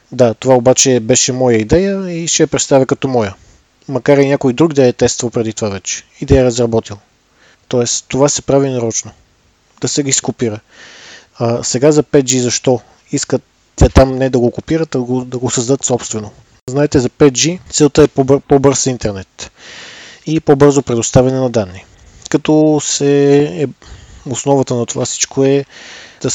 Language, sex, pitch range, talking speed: Bulgarian, male, 120-145 Hz, 170 wpm